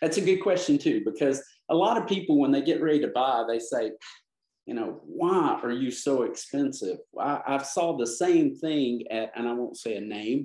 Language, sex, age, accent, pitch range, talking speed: English, male, 50-69, American, 120-195 Hz, 220 wpm